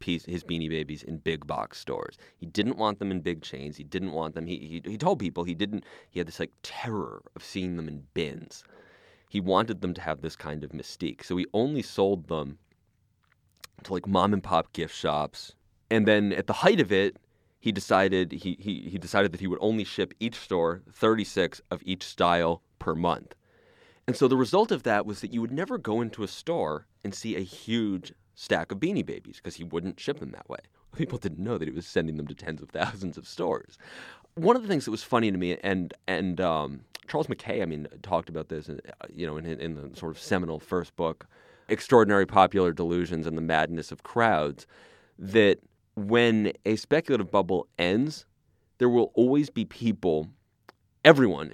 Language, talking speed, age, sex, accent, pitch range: English, 200 wpm, 30-49, male, American, 85-110 Hz